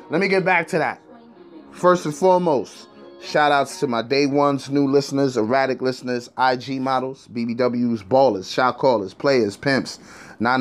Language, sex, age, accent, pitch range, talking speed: English, male, 30-49, American, 115-135 Hz, 160 wpm